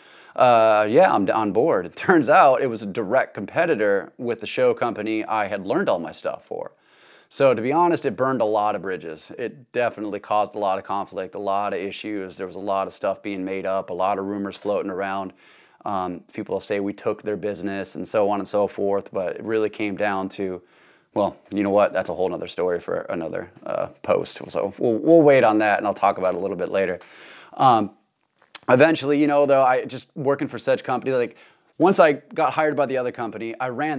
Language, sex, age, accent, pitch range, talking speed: English, male, 20-39, American, 100-125 Hz, 225 wpm